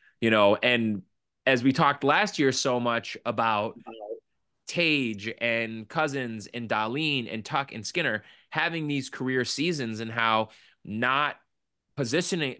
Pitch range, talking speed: 115-155 Hz, 135 wpm